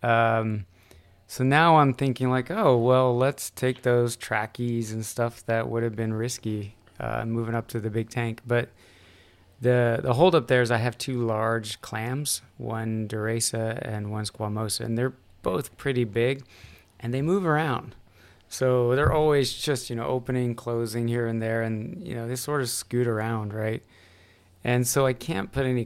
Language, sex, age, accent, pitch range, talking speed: English, male, 20-39, American, 110-125 Hz, 180 wpm